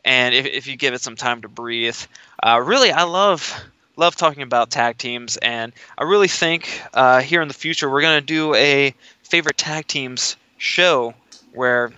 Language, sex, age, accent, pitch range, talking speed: English, male, 20-39, American, 125-155 Hz, 190 wpm